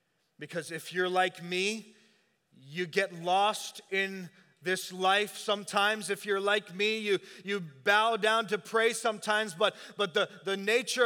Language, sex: English, male